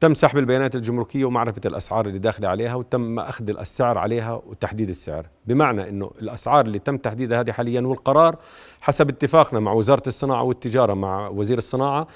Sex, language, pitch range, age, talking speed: male, Arabic, 110-145 Hz, 40-59, 165 wpm